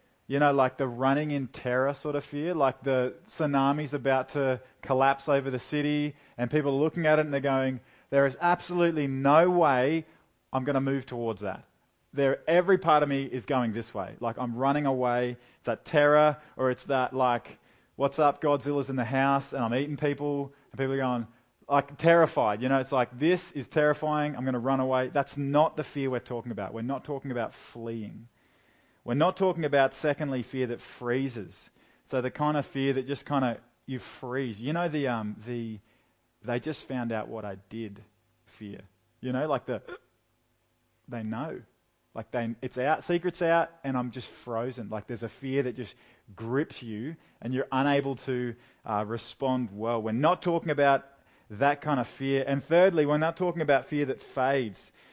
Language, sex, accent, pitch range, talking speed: English, male, Australian, 120-145 Hz, 195 wpm